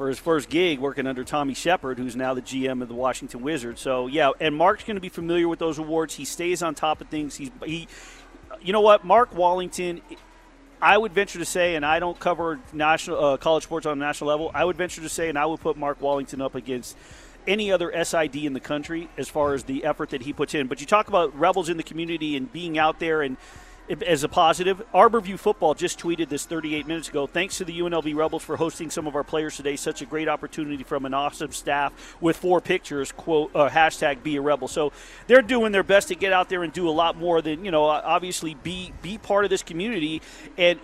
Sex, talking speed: male, 240 wpm